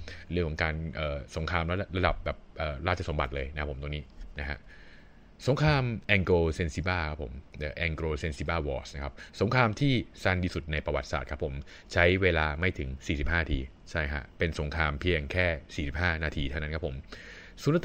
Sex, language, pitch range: male, Thai, 75-90 Hz